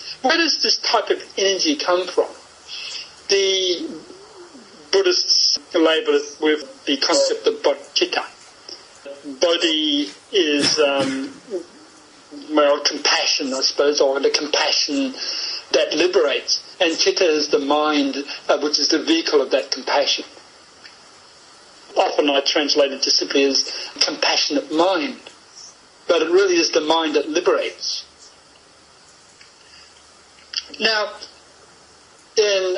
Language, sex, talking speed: English, male, 110 wpm